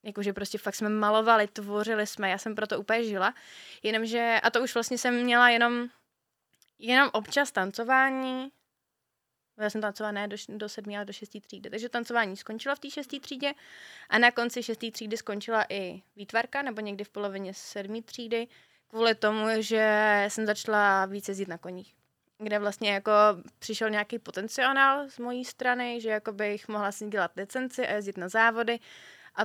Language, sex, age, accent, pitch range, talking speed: Czech, female, 20-39, native, 200-230 Hz, 170 wpm